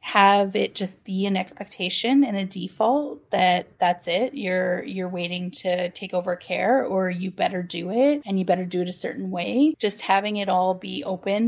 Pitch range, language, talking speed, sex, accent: 185-240 Hz, English, 200 wpm, female, American